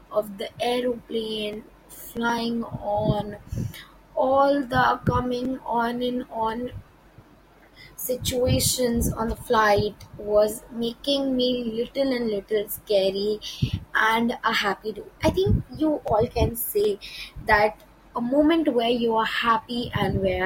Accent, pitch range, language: Indian, 210-270 Hz, English